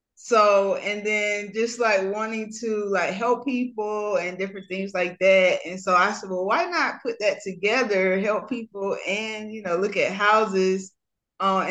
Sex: female